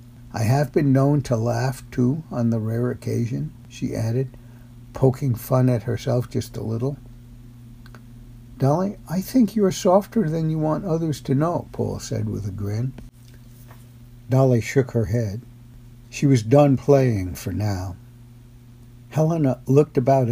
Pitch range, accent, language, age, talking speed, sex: 120-135 Hz, American, English, 60-79, 145 wpm, male